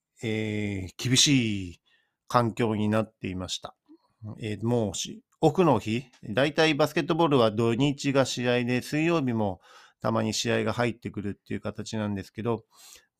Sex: male